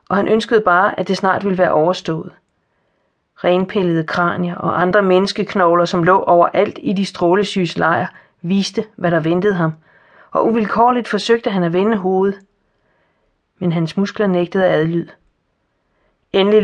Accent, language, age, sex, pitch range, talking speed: native, Danish, 40-59, female, 175-205 Hz, 145 wpm